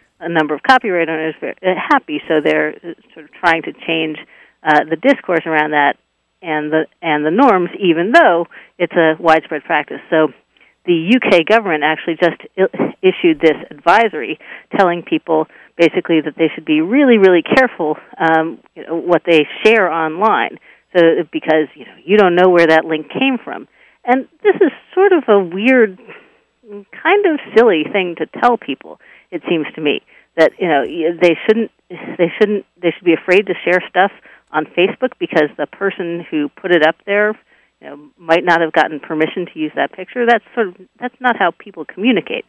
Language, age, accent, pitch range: English, 50-69, American, 155-200 Hz